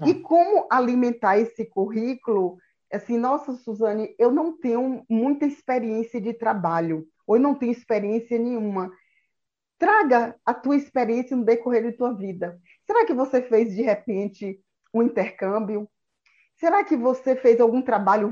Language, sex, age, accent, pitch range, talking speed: Portuguese, female, 20-39, Brazilian, 195-245 Hz, 145 wpm